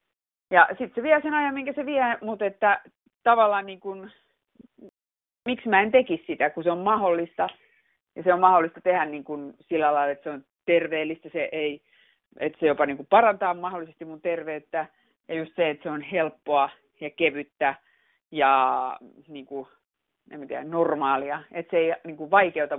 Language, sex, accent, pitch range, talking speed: Finnish, female, native, 150-235 Hz, 180 wpm